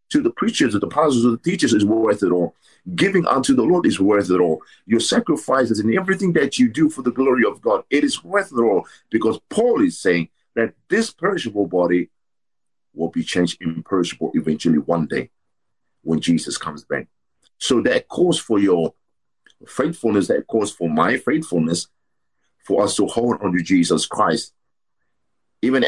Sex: male